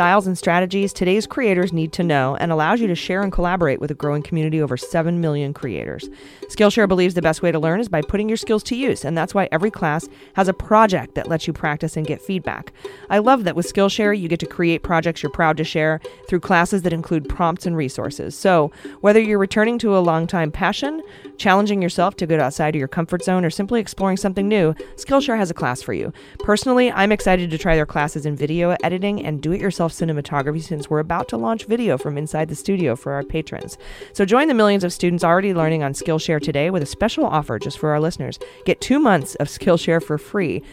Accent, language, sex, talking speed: American, English, female, 230 wpm